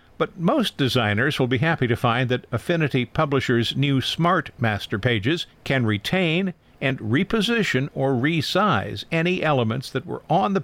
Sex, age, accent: male, 50-69, American